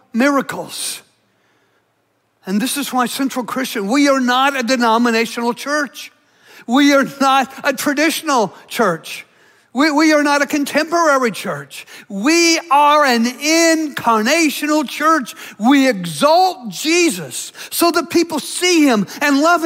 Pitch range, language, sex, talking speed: 245-300 Hz, English, male, 125 wpm